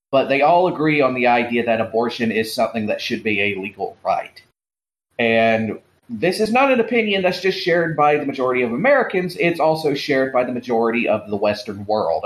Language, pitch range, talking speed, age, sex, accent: English, 110-150 Hz, 200 wpm, 40-59, male, American